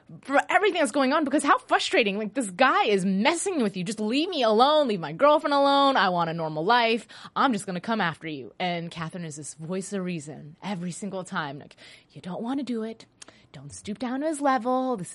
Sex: female